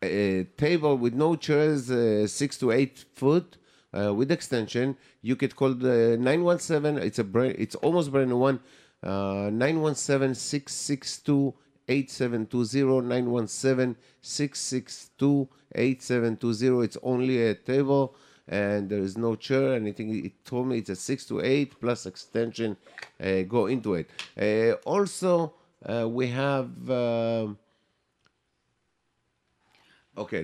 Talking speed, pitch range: 160 wpm, 105-135 Hz